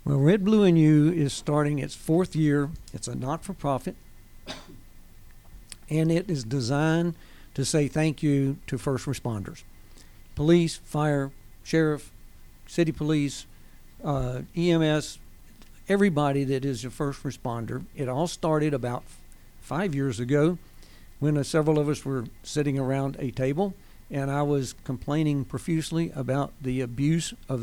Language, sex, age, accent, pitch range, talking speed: English, male, 60-79, American, 130-150 Hz, 140 wpm